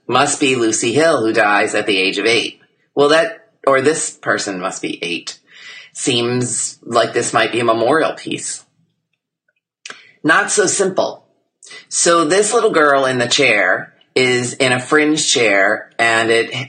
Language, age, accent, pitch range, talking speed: English, 40-59, American, 110-150 Hz, 160 wpm